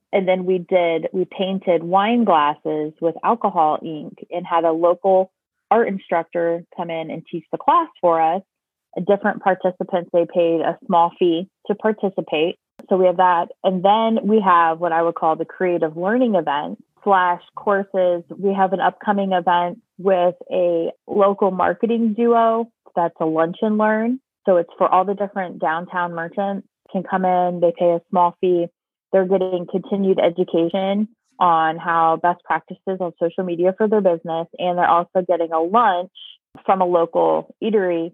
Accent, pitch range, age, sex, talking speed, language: American, 170-195 Hz, 20-39, female, 170 wpm, English